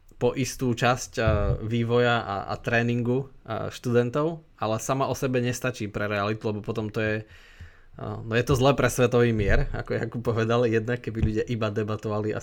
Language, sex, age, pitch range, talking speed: Slovak, male, 20-39, 110-135 Hz, 185 wpm